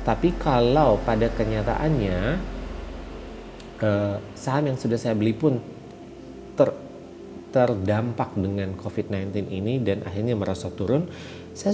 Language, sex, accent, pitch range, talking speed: Indonesian, male, native, 90-120 Hz, 105 wpm